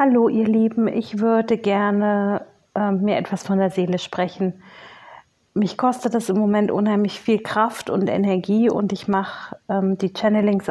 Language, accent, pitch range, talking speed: German, German, 195-225 Hz, 160 wpm